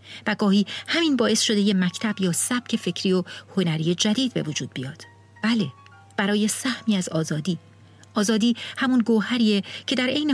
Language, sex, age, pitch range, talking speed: Persian, female, 40-59, 165-225 Hz, 155 wpm